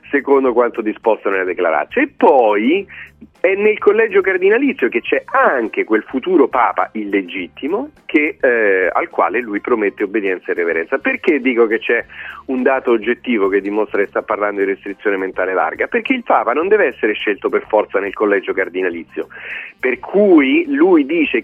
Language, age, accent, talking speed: Italian, 40-59, native, 165 wpm